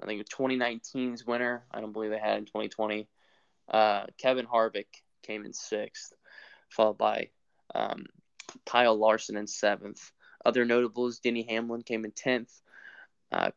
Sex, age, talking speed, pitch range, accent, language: male, 10-29, 140 wpm, 110-130 Hz, American, English